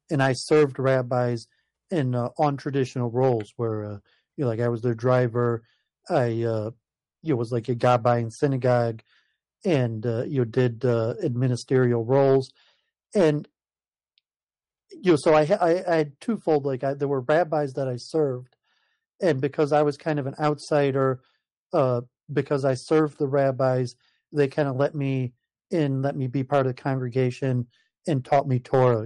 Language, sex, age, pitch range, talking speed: English, male, 40-59, 125-145 Hz, 175 wpm